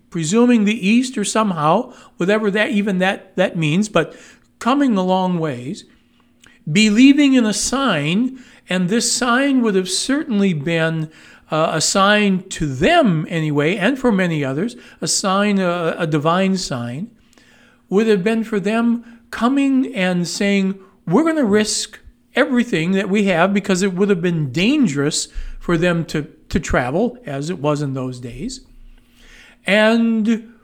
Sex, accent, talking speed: male, American, 150 wpm